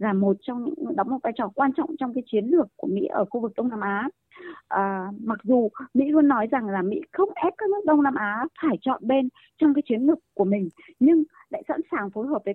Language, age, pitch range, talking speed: Vietnamese, 20-39, 225-315 Hz, 260 wpm